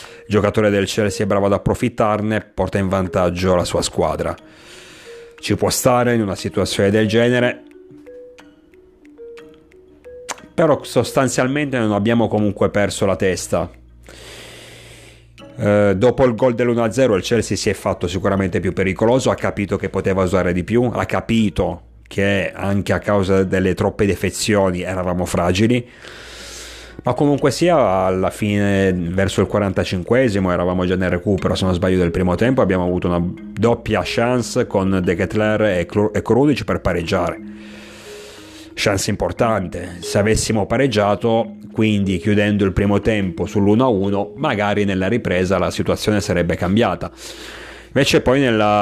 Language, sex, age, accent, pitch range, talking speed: Italian, male, 30-49, native, 95-115 Hz, 140 wpm